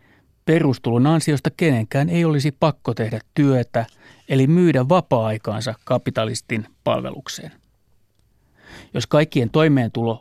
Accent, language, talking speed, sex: native, Finnish, 95 wpm, male